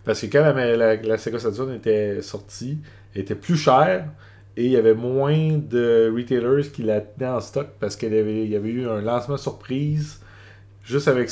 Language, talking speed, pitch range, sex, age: French, 190 wpm, 100-130 Hz, male, 30-49